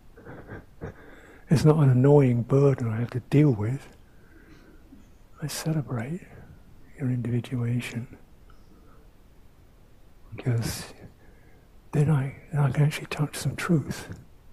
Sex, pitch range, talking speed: male, 115-145 Hz, 100 wpm